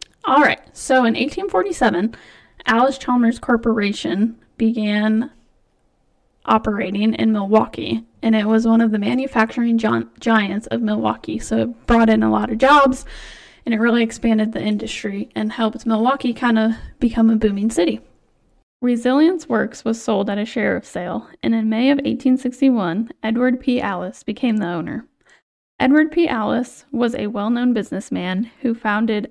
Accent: American